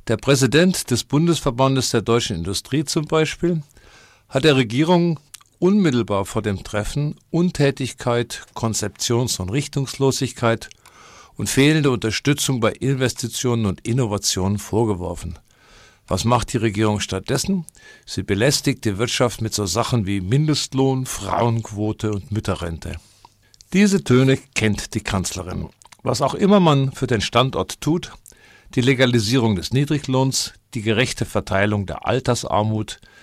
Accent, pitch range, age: German, 105-135 Hz, 50-69